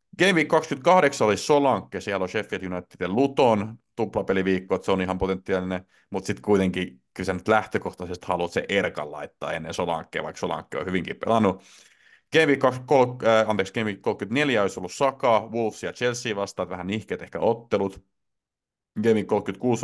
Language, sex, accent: Finnish, male, native